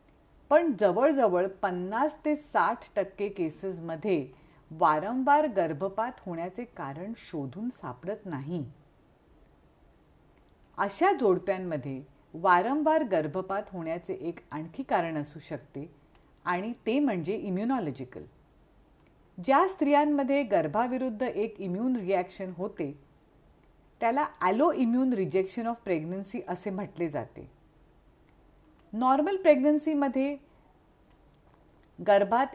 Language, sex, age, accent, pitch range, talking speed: Marathi, female, 40-59, native, 175-265 Hz, 85 wpm